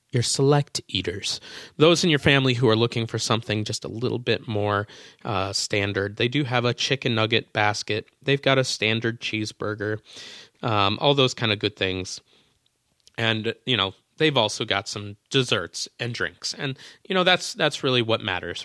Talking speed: 180 wpm